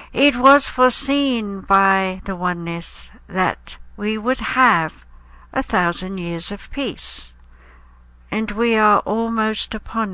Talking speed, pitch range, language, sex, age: 120 wpm, 160-225 Hz, English, female, 60-79